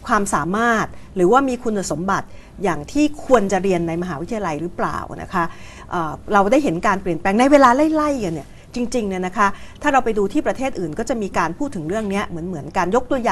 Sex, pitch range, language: female, 175-255 Hz, Thai